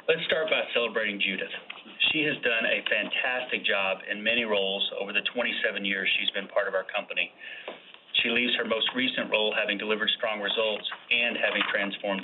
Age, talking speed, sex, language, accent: 30-49, 180 wpm, male, English, American